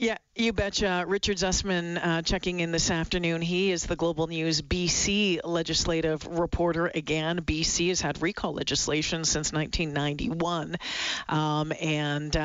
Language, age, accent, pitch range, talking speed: English, 40-59, American, 160-200 Hz, 125 wpm